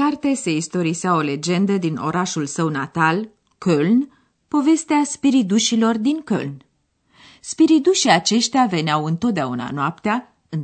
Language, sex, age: Romanian, female, 30-49